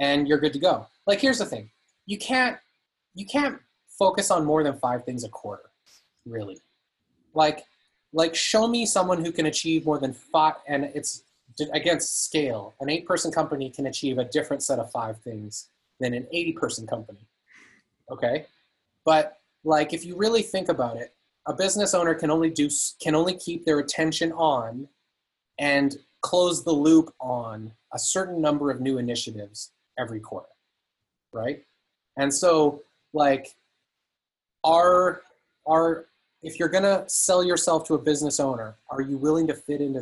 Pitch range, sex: 135-175 Hz, male